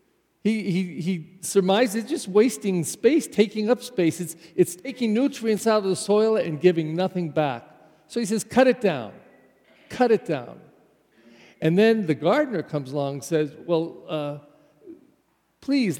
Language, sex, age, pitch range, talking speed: English, male, 50-69, 155-225 Hz, 160 wpm